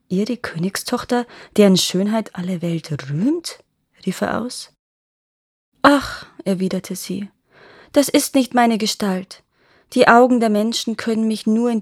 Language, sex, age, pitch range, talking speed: German, female, 20-39, 185-240 Hz, 130 wpm